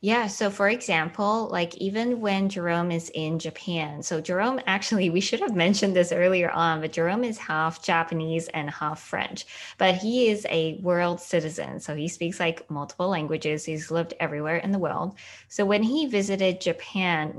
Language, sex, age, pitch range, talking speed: English, female, 20-39, 165-205 Hz, 180 wpm